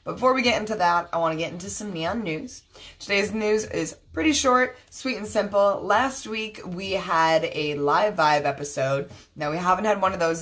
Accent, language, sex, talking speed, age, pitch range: American, English, female, 205 wpm, 20-39, 150-210 Hz